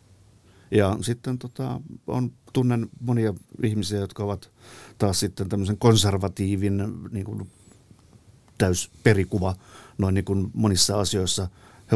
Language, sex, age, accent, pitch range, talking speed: Finnish, male, 50-69, native, 95-110 Hz, 100 wpm